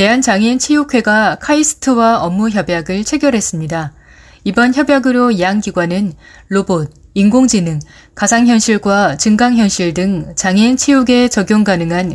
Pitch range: 185-250 Hz